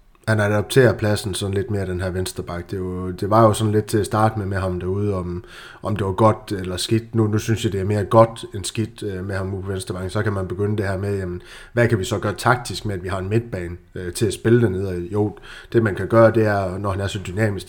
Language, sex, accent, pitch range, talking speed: Danish, male, native, 95-115 Hz, 270 wpm